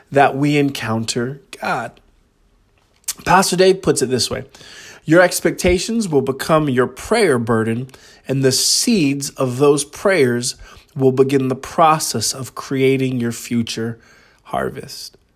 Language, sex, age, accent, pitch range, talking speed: English, male, 20-39, American, 130-150 Hz, 125 wpm